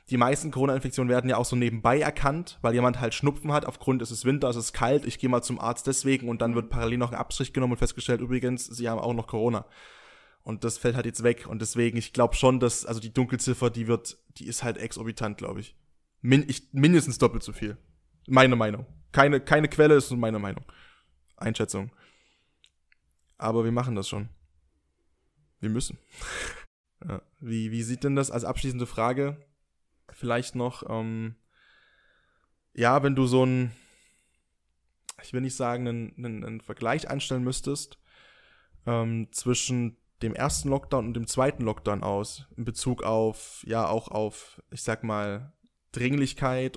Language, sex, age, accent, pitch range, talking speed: German, male, 20-39, German, 115-130 Hz, 170 wpm